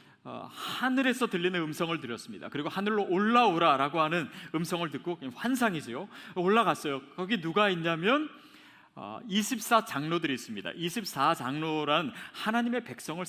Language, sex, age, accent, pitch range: Korean, male, 40-59, native, 165-245 Hz